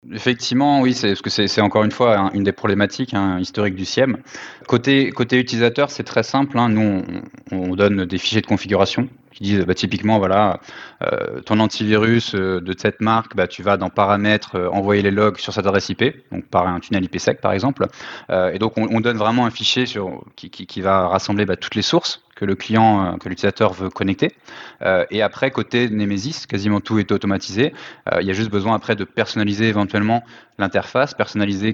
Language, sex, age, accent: French, male, 20-39, French